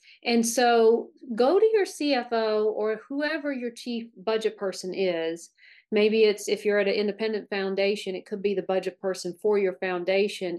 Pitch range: 195-260 Hz